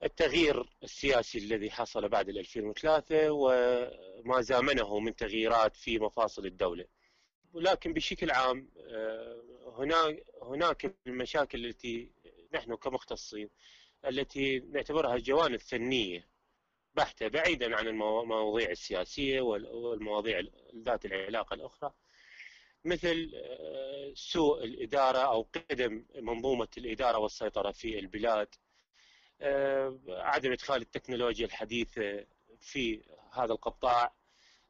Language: Arabic